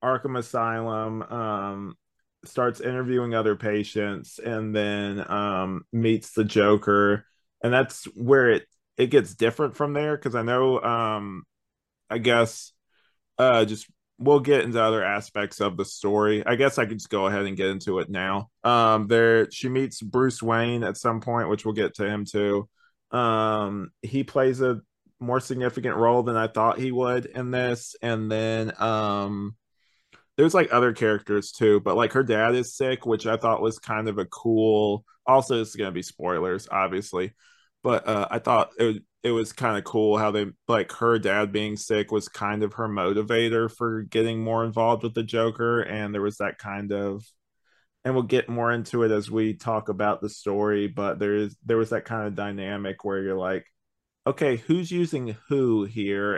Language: English